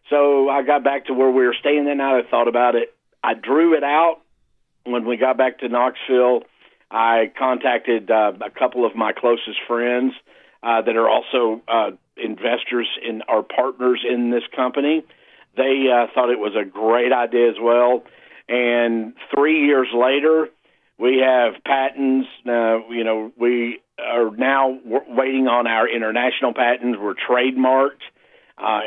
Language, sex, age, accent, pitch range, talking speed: English, male, 50-69, American, 120-135 Hz, 160 wpm